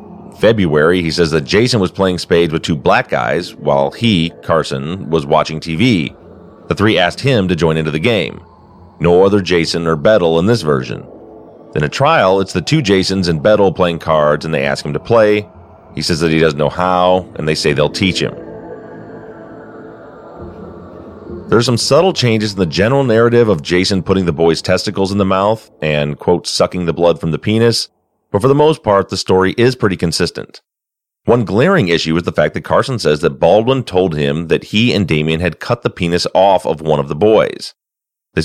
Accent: American